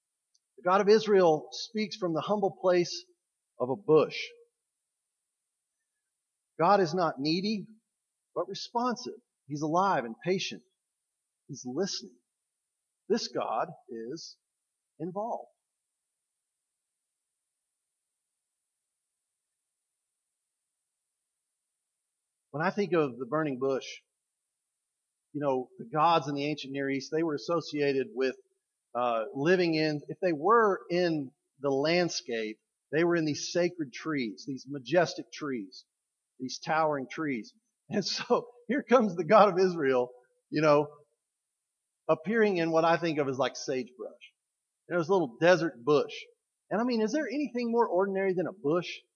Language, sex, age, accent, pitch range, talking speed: English, male, 50-69, American, 150-205 Hz, 125 wpm